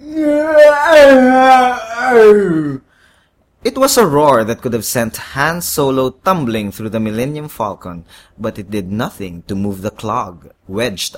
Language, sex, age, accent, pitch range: English, male, 20-39, Filipino, 95-155 Hz